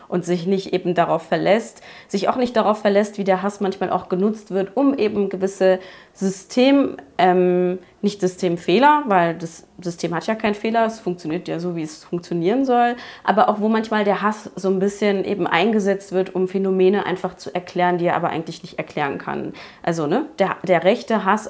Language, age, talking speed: German, 20-39, 195 wpm